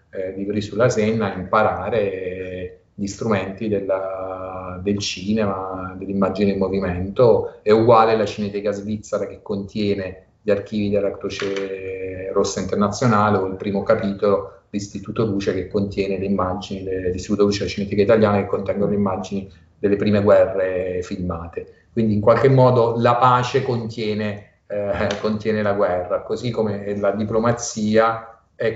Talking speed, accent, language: 135 wpm, native, Italian